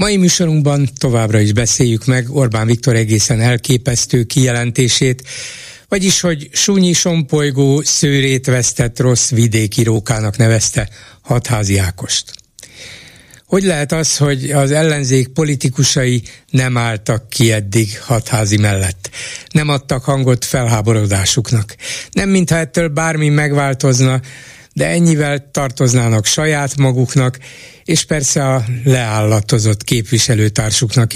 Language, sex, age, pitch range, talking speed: Hungarian, male, 60-79, 115-145 Hz, 105 wpm